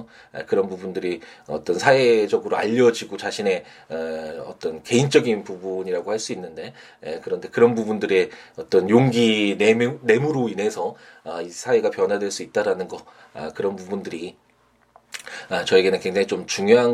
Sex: male